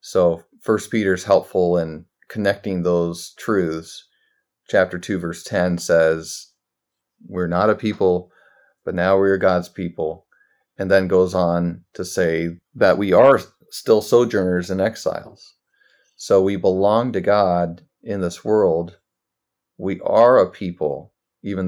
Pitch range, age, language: 85-95 Hz, 40-59, English